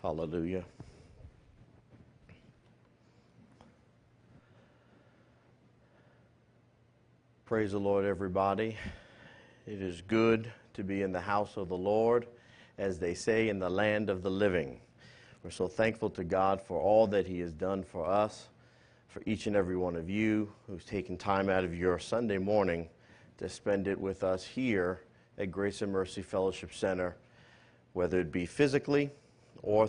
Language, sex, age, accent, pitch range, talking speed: English, male, 50-69, American, 95-115 Hz, 140 wpm